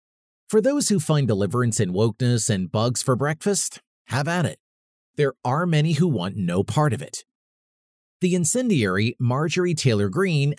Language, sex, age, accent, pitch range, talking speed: English, male, 30-49, American, 130-180 Hz, 160 wpm